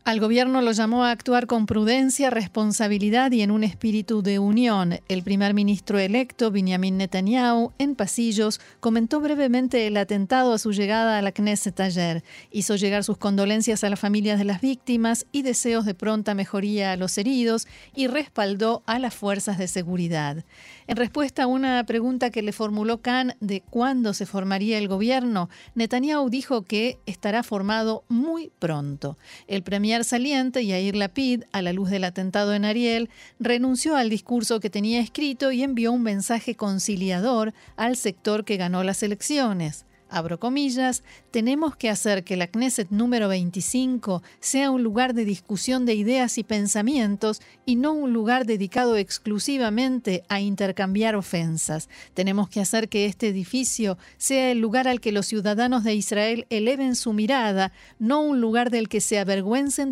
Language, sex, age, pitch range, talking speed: Spanish, female, 40-59, 200-245 Hz, 160 wpm